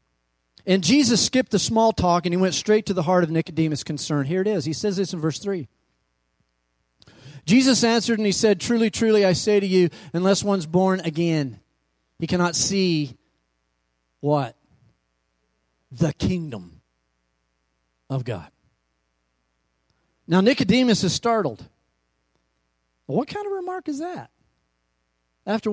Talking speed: 140 wpm